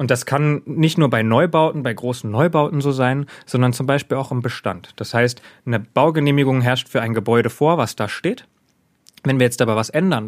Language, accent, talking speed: German, German, 210 wpm